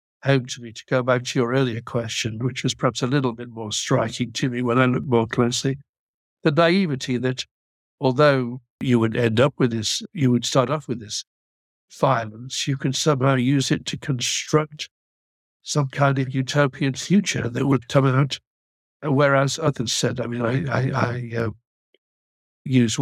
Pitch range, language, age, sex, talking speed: 120-135 Hz, English, 60-79, male, 175 wpm